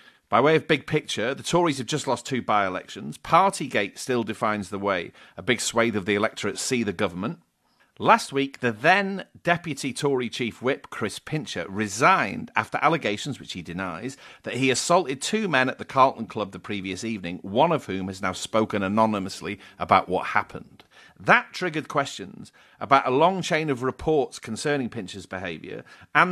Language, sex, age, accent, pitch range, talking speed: English, male, 40-59, British, 110-150 Hz, 180 wpm